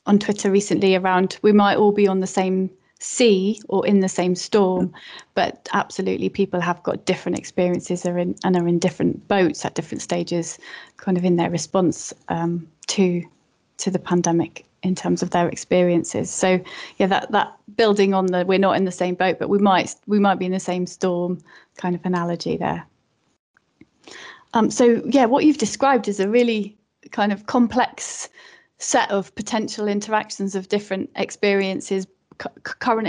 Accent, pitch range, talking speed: British, 180-205 Hz, 175 wpm